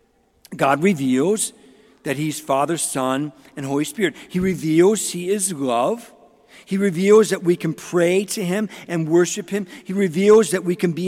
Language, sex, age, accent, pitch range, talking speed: English, male, 50-69, American, 155-220 Hz, 170 wpm